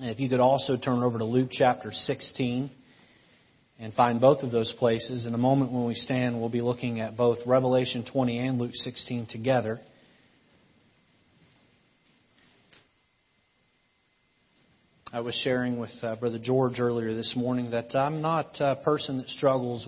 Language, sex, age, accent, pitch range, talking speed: English, male, 40-59, American, 115-135 Hz, 150 wpm